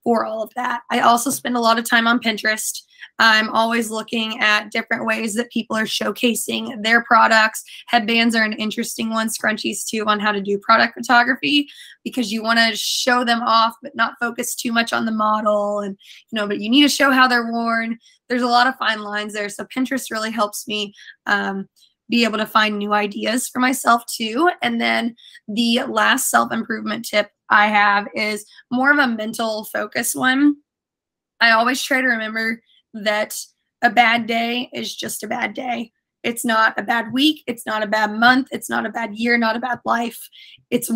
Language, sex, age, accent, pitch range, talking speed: English, female, 20-39, American, 215-240 Hz, 200 wpm